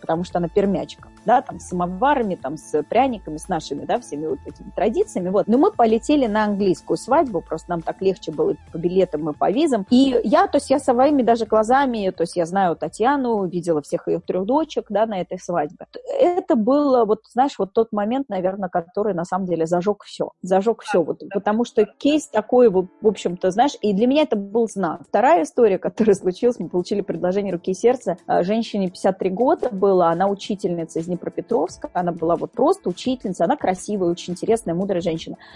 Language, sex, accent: Russian, female, native